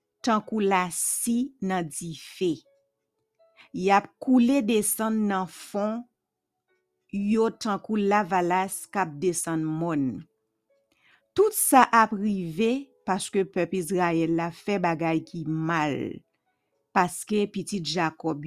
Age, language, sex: 50-69, English, female